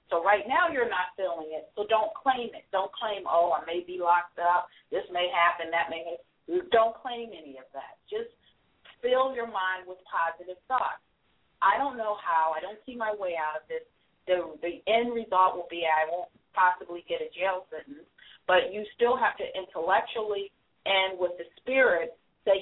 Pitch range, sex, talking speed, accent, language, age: 170-220 Hz, female, 195 wpm, American, English, 40-59